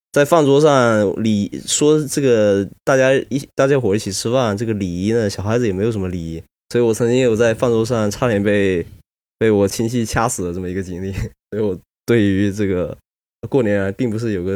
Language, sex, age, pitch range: Chinese, male, 20-39, 90-120 Hz